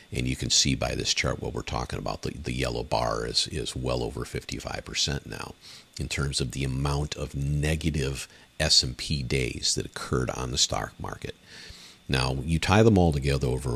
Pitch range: 65-80 Hz